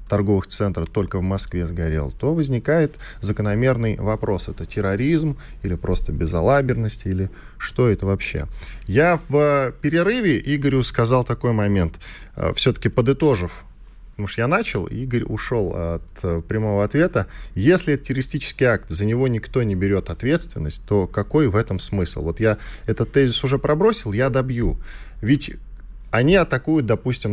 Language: Russian